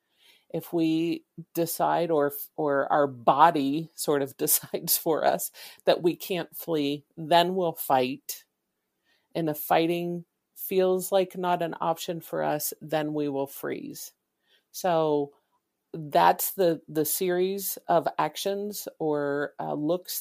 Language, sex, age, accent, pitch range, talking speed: English, female, 50-69, American, 150-180 Hz, 130 wpm